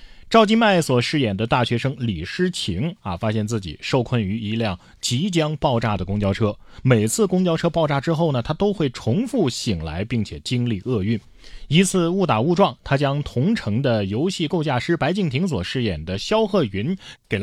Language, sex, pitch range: Chinese, male, 110-160 Hz